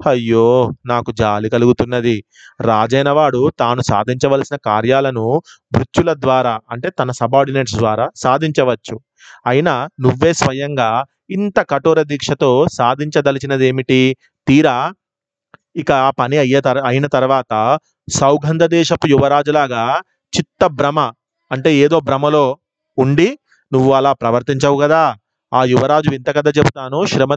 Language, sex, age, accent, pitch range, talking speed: Telugu, male, 30-49, native, 130-155 Hz, 105 wpm